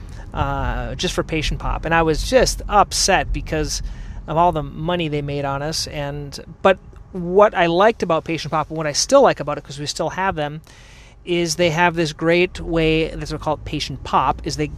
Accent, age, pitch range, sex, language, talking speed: American, 30-49, 145-175 Hz, male, English, 210 wpm